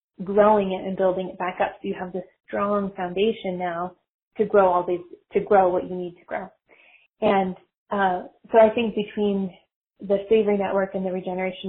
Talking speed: 190 wpm